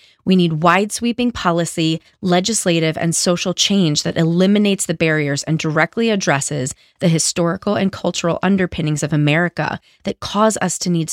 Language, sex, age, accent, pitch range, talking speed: English, female, 30-49, American, 155-190 Hz, 145 wpm